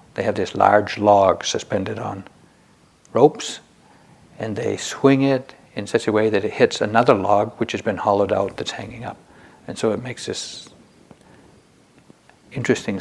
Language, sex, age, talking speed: English, male, 60-79, 160 wpm